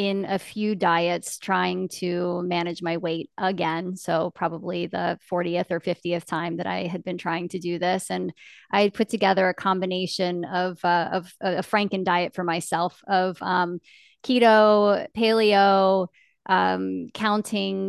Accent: American